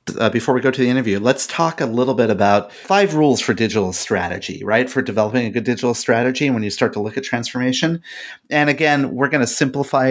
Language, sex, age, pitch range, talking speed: English, male, 30-49, 105-135 Hz, 225 wpm